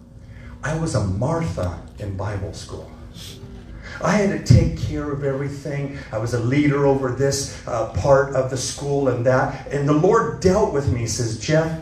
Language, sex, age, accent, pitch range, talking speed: English, male, 40-59, American, 100-130 Hz, 180 wpm